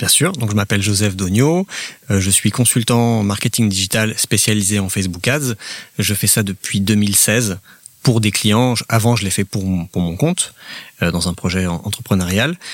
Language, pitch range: French, 95-110 Hz